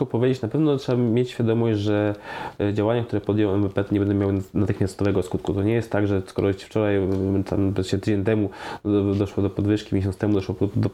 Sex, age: male, 20-39